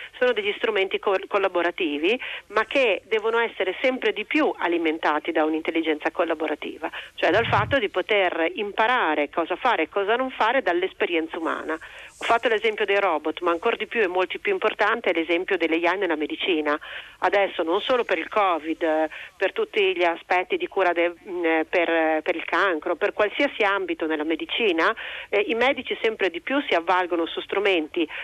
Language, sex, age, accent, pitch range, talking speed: Italian, female, 40-59, native, 170-260 Hz, 170 wpm